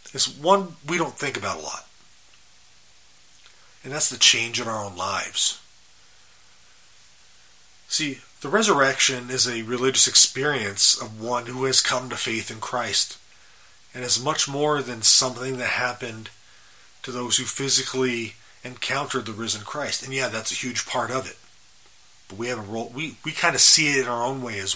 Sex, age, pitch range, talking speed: male, 30-49, 110-135 Hz, 160 wpm